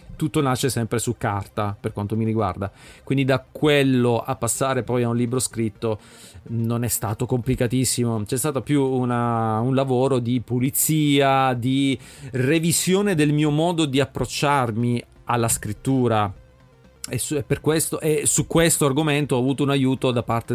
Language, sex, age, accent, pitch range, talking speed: Italian, male, 40-59, native, 115-140 Hz, 145 wpm